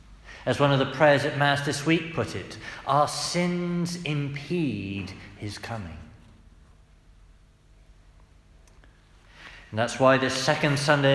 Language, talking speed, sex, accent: English, 120 wpm, male, British